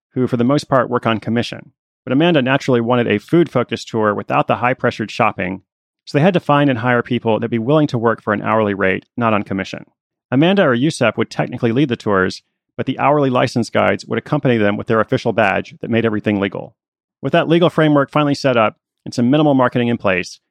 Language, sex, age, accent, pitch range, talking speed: English, male, 30-49, American, 110-145 Hz, 230 wpm